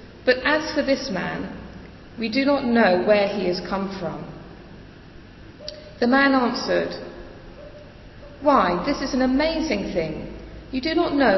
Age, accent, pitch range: 40-59, British, 190-255 Hz